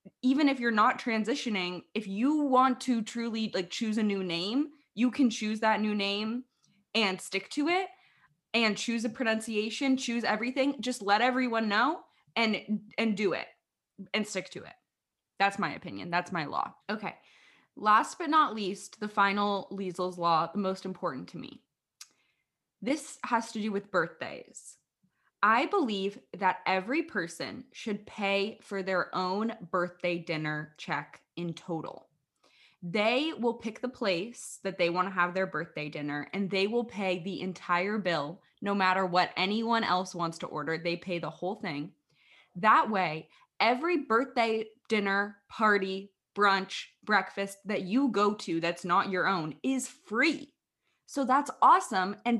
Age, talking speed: 20-39, 160 wpm